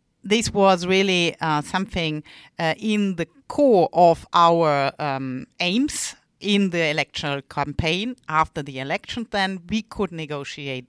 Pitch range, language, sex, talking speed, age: 160-210 Hz, English, female, 130 wpm, 50-69